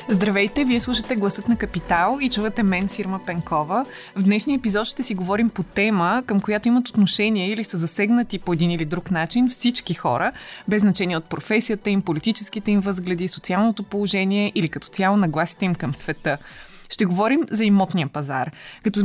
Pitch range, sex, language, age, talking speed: 175-220 Hz, female, Bulgarian, 20-39, 175 wpm